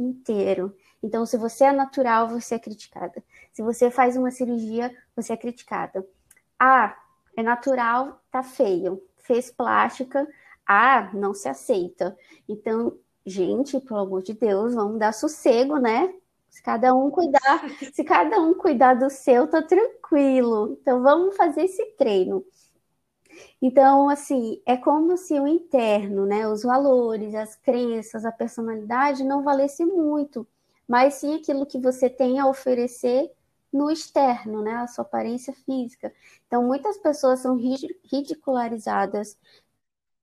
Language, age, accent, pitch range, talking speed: Portuguese, 20-39, Brazilian, 230-280 Hz, 135 wpm